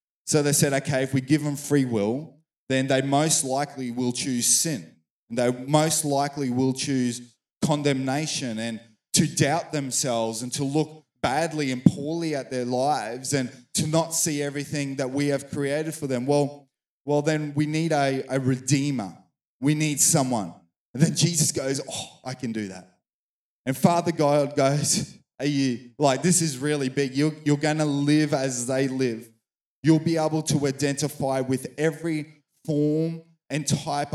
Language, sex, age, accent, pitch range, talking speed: English, male, 20-39, Australian, 130-155 Hz, 170 wpm